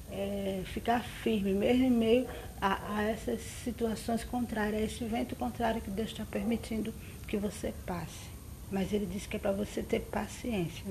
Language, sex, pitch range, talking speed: Portuguese, female, 195-225 Hz, 170 wpm